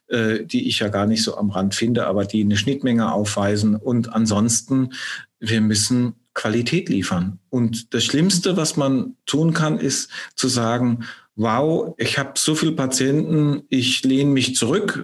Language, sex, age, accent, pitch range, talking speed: German, male, 40-59, German, 110-135 Hz, 160 wpm